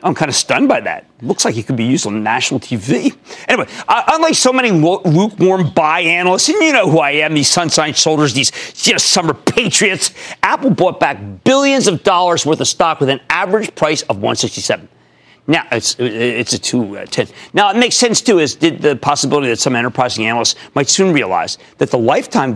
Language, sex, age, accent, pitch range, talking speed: English, male, 40-59, American, 125-200 Hz, 205 wpm